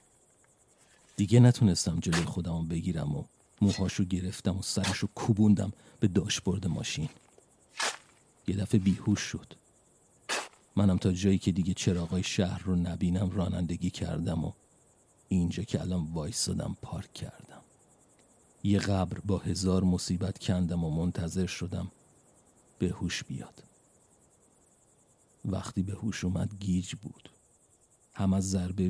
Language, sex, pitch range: Persian, male, 90-100 Hz